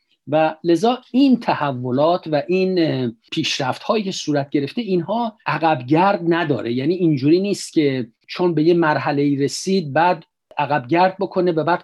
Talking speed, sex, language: 135 wpm, male, Persian